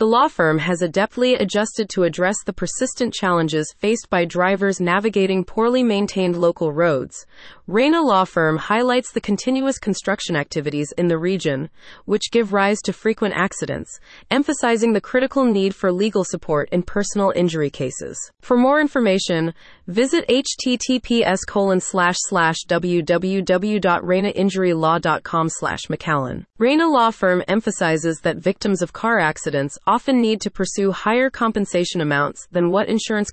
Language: English